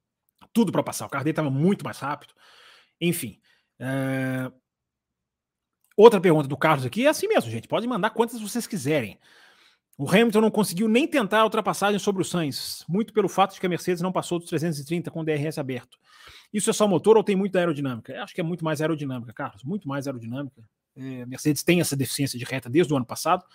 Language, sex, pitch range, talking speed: Portuguese, male, 130-180 Hz, 210 wpm